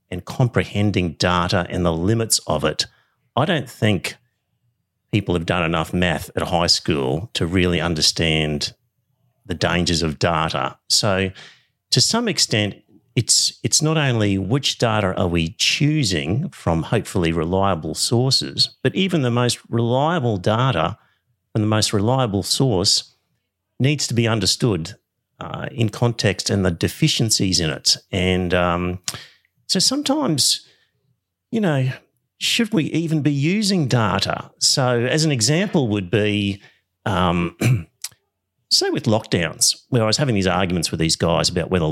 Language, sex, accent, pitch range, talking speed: English, male, Australian, 90-130 Hz, 140 wpm